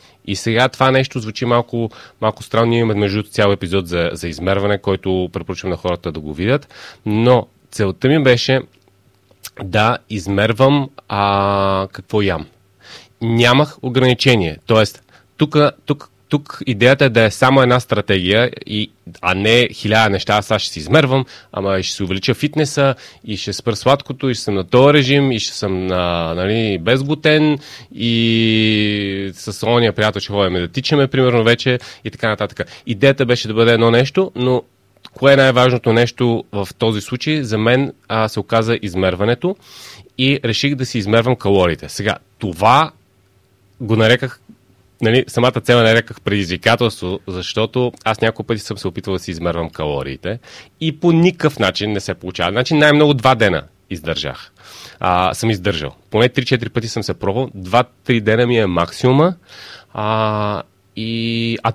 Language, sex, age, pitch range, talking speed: Bulgarian, male, 30-49, 100-125 Hz, 155 wpm